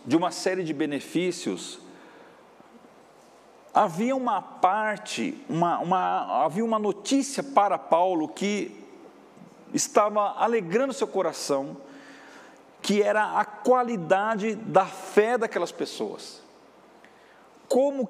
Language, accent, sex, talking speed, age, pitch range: Portuguese, Brazilian, male, 95 wpm, 50-69, 190-255 Hz